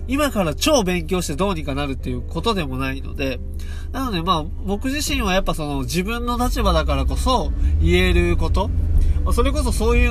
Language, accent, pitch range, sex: Japanese, native, 70-90 Hz, male